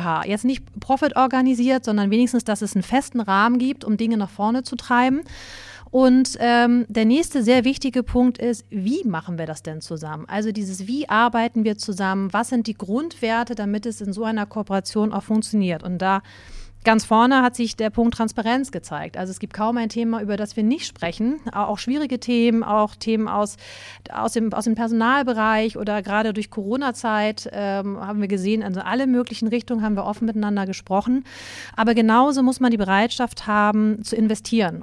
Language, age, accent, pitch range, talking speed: German, 30-49, German, 205-245 Hz, 185 wpm